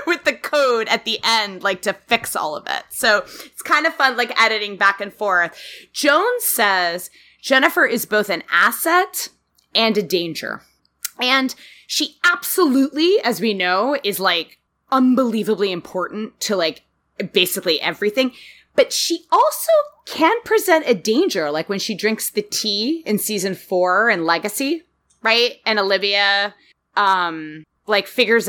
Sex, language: female, English